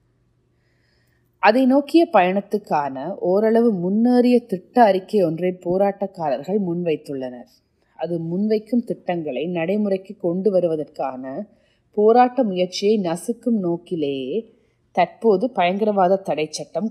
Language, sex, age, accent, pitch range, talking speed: Tamil, female, 30-49, native, 160-205 Hz, 85 wpm